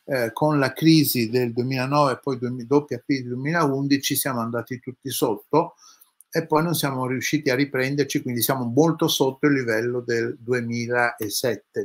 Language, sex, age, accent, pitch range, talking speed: Italian, male, 60-79, native, 115-150 Hz, 155 wpm